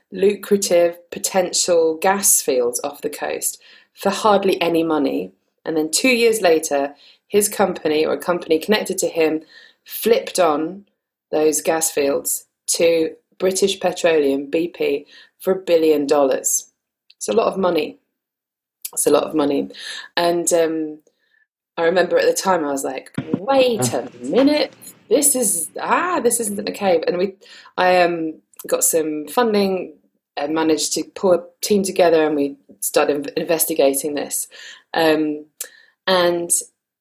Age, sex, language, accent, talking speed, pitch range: 20-39, female, English, British, 145 wpm, 160-220 Hz